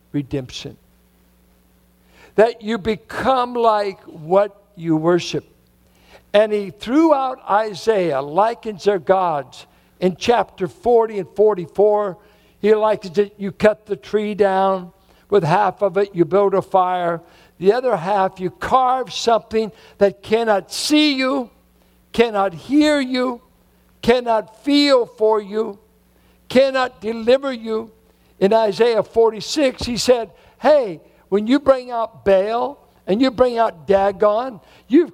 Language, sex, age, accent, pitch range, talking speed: English, male, 60-79, American, 195-250 Hz, 125 wpm